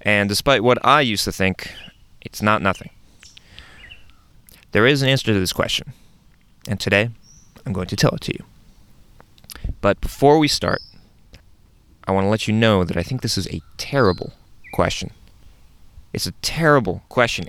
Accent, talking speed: American, 165 wpm